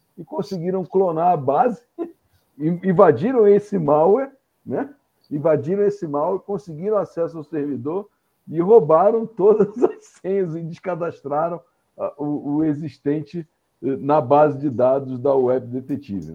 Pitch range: 130-180 Hz